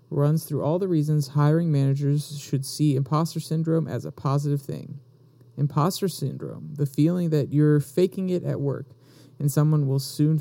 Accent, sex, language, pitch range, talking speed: American, male, English, 135-155 Hz, 165 wpm